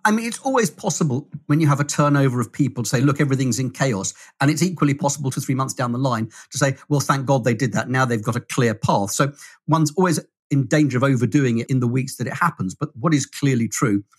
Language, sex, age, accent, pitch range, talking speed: English, male, 40-59, British, 120-150 Hz, 260 wpm